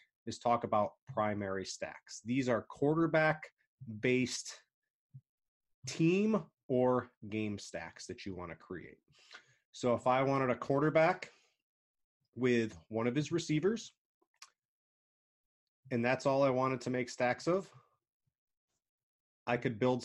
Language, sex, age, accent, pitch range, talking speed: English, male, 30-49, American, 110-130 Hz, 120 wpm